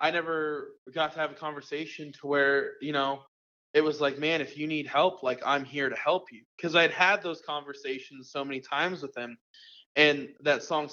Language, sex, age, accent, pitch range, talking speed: English, male, 20-39, American, 135-155 Hz, 210 wpm